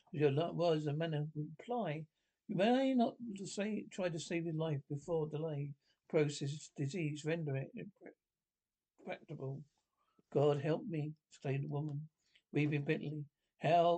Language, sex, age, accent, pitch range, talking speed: English, male, 60-79, British, 145-175 Hz, 140 wpm